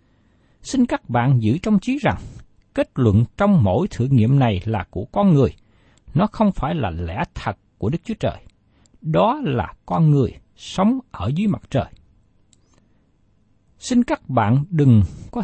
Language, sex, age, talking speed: Vietnamese, male, 60-79, 165 wpm